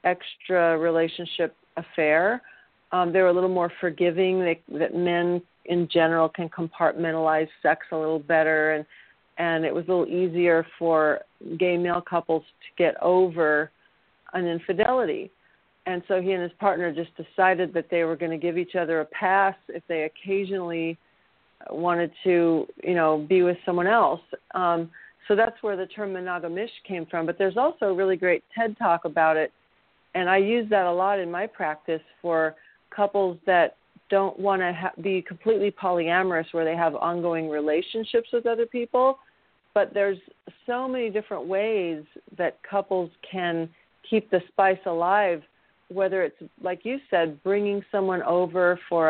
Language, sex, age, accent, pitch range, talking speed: English, female, 40-59, American, 165-195 Hz, 165 wpm